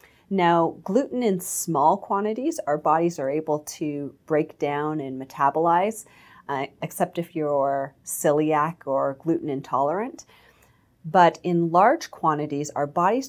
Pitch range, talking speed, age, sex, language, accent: 145-185 Hz, 125 wpm, 30-49, female, English, American